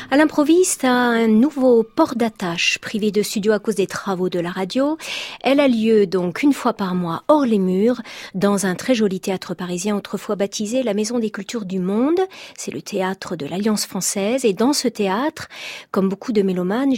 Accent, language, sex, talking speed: French, French, female, 200 wpm